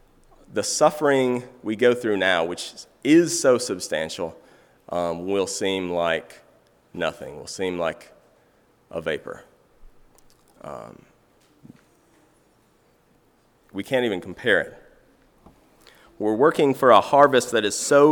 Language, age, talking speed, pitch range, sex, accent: English, 30-49, 115 wpm, 100-130 Hz, male, American